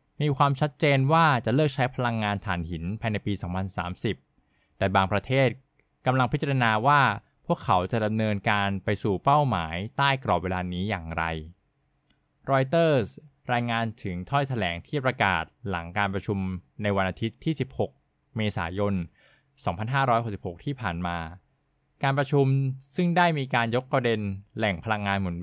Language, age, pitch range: Thai, 20-39, 95-135 Hz